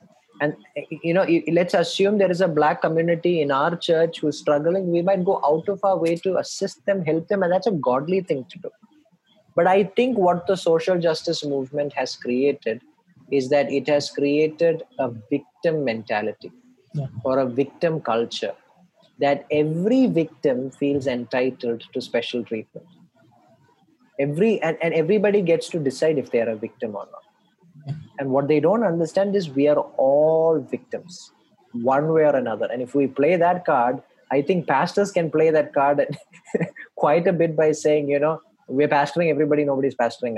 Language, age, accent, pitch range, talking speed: English, 20-39, Indian, 140-175 Hz, 175 wpm